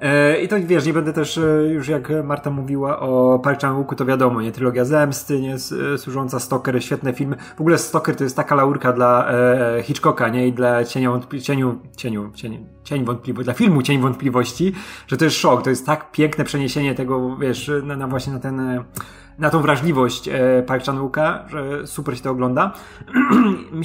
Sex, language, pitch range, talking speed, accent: male, Polish, 130-155 Hz, 180 wpm, native